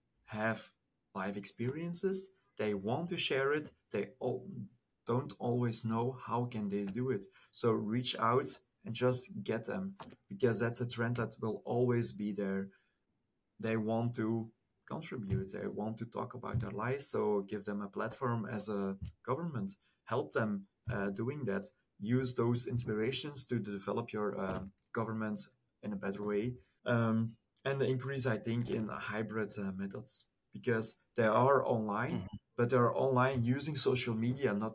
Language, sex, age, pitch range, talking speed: English, male, 30-49, 105-130 Hz, 155 wpm